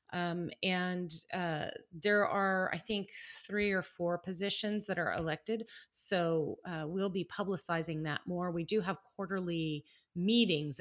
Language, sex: English, female